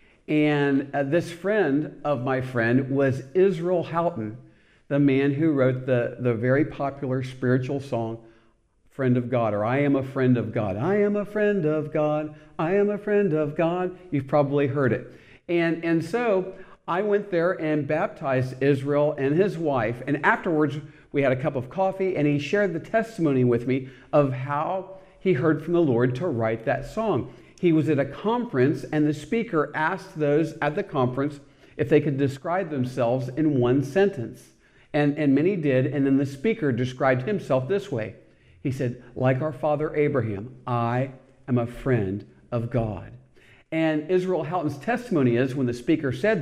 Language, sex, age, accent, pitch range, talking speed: English, male, 50-69, American, 125-165 Hz, 180 wpm